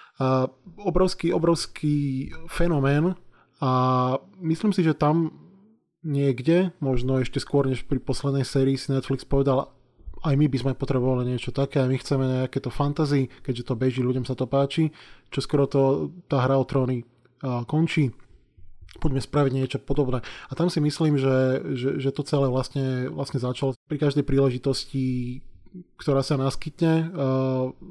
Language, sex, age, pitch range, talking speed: Slovak, male, 20-39, 130-150 Hz, 155 wpm